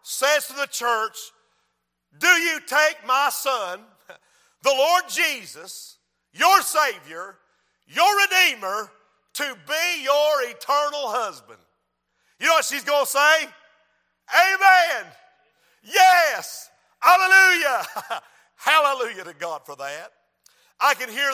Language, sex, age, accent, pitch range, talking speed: English, male, 50-69, American, 245-310 Hz, 110 wpm